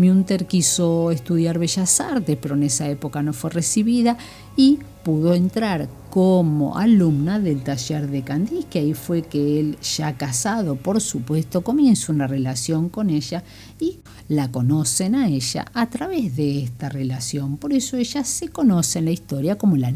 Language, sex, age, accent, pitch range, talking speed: Spanish, female, 50-69, Argentinian, 140-190 Hz, 160 wpm